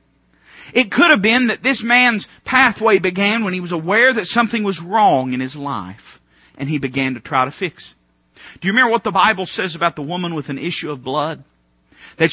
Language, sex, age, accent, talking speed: English, male, 40-59, American, 215 wpm